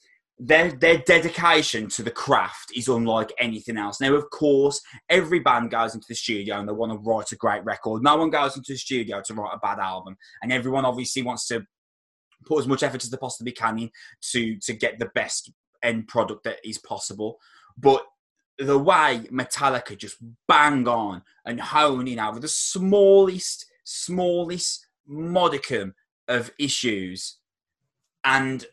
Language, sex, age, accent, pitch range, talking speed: English, male, 20-39, British, 110-145 Hz, 165 wpm